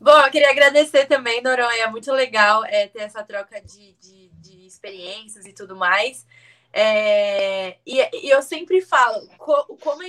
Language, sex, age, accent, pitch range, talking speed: Portuguese, female, 20-39, Brazilian, 220-270 Hz, 150 wpm